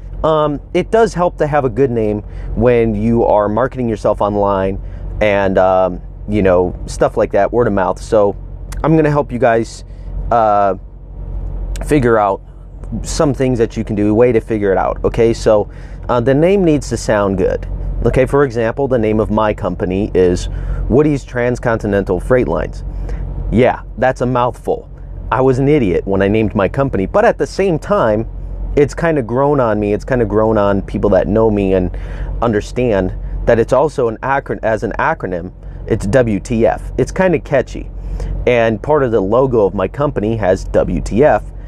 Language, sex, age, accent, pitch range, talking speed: English, male, 30-49, American, 90-125 Hz, 185 wpm